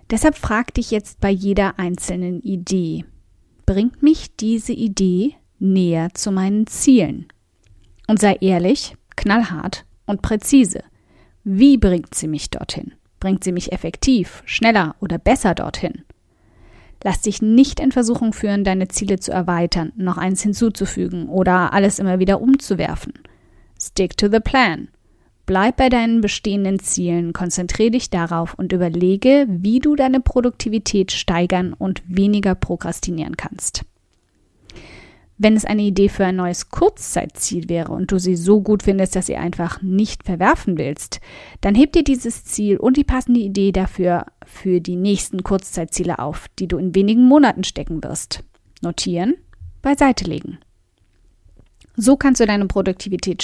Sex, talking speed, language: female, 145 wpm, German